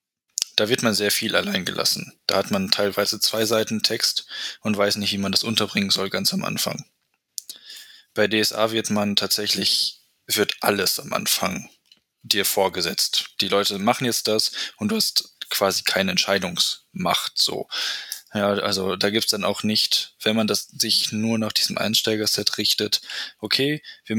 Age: 10-29